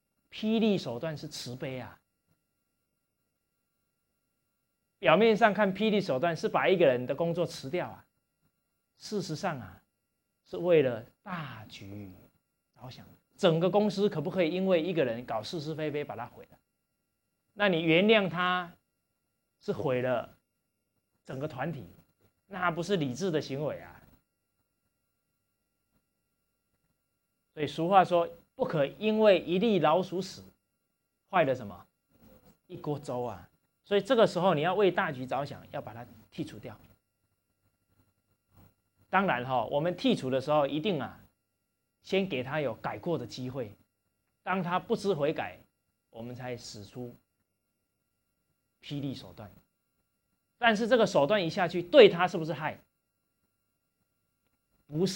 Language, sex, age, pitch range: English, male, 30-49, 115-185 Hz